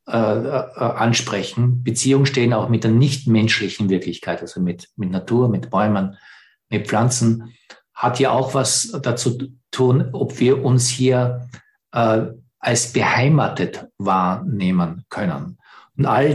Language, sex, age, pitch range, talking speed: English, male, 50-69, 110-135 Hz, 120 wpm